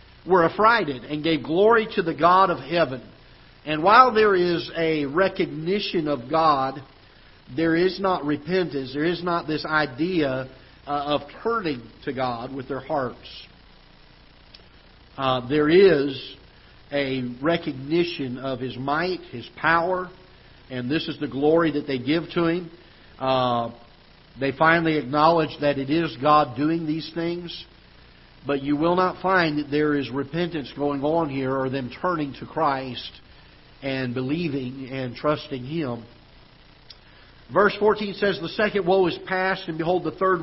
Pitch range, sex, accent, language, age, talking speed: 135-170 Hz, male, American, English, 50-69, 145 wpm